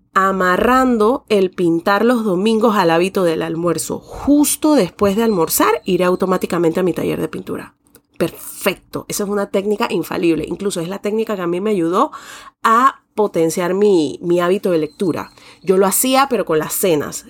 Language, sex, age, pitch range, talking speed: Spanish, female, 30-49, 170-220 Hz, 170 wpm